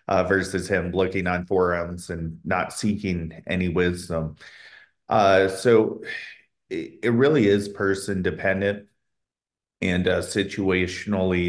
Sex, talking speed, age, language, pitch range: male, 115 wpm, 30-49, English, 90-100 Hz